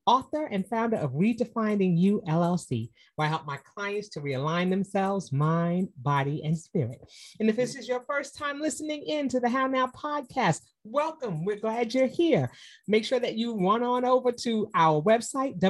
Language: English